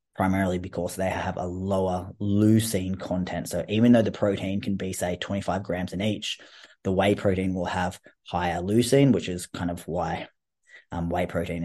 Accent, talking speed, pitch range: Australian, 180 wpm, 95-110 Hz